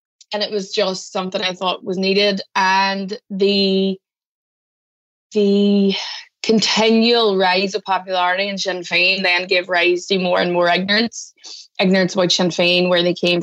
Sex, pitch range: female, 185-205 Hz